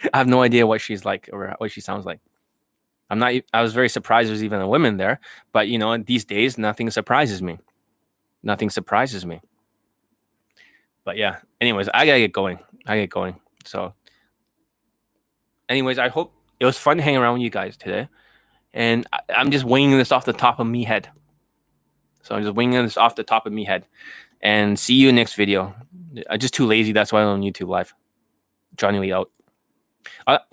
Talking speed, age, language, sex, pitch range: 195 wpm, 20-39, English, male, 115-185 Hz